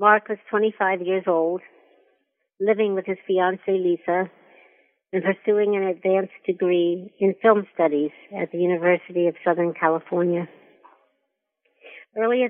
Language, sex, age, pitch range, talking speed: English, female, 60-79, 175-205 Hz, 120 wpm